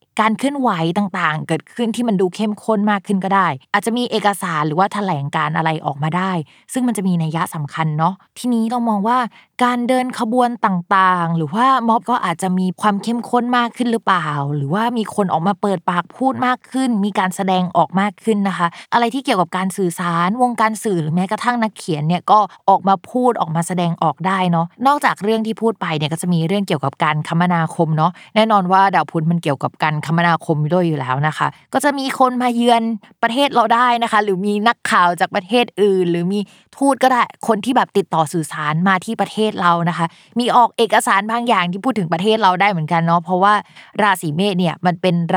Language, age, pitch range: Thai, 20-39, 170-225 Hz